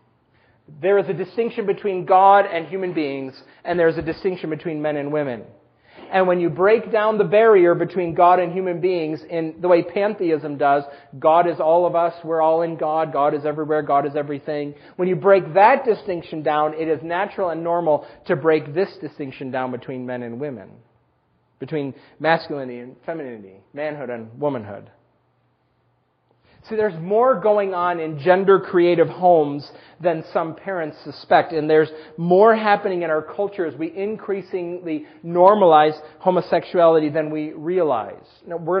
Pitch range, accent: 145-185 Hz, American